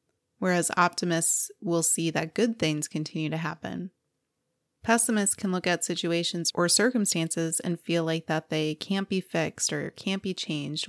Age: 20-39